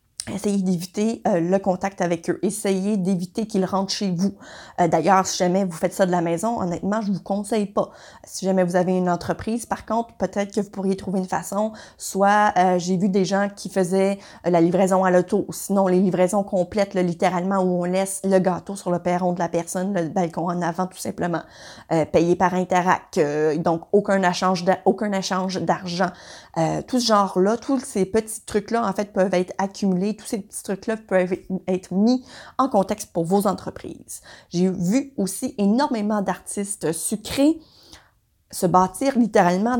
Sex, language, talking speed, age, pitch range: female, French, 185 wpm, 30-49, 180-215 Hz